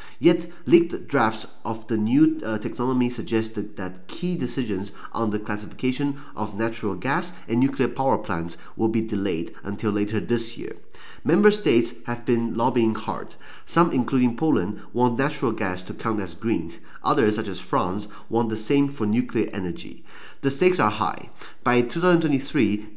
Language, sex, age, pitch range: Chinese, male, 30-49, 105-135 Hz